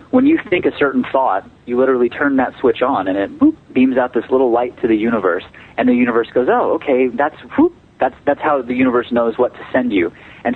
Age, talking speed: 30-49, 240 wpm